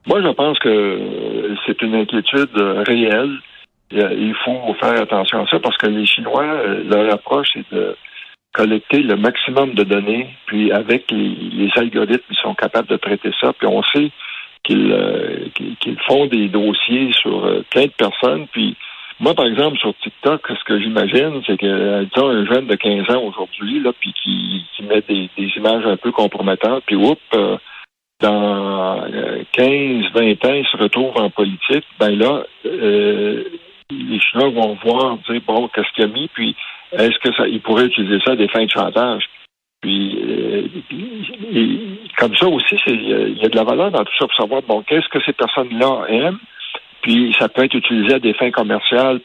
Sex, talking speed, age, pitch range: male, 190 wpm, 60-79, 105-140 Hz